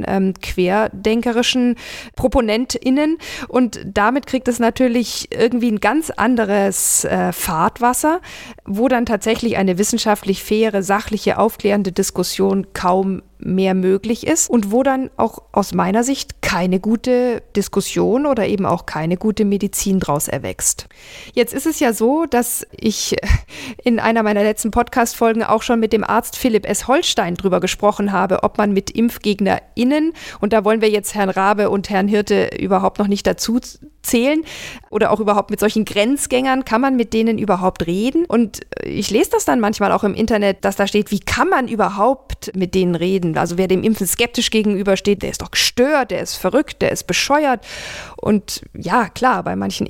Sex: female